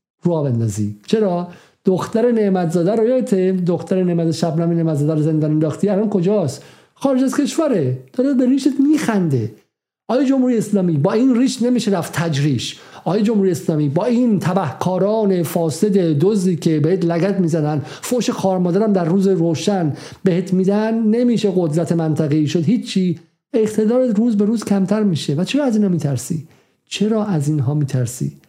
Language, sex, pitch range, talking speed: Persian, male, 140-195 Hz, 160 wpm